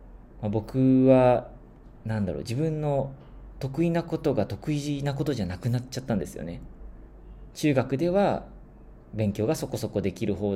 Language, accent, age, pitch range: Japanese, native, 20-39, 95-130 Hz